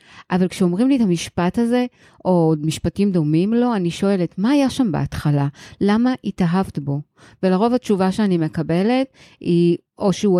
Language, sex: Hebrew, female